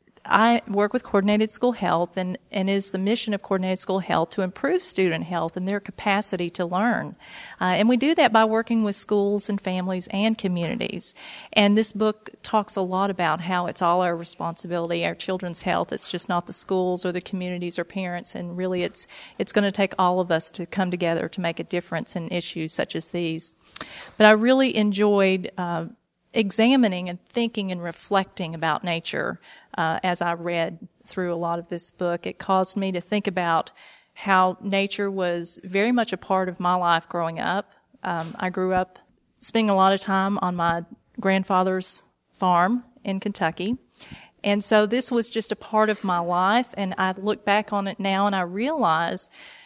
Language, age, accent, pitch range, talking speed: English, 40-59, American, 180-210 Hz, 190 wpm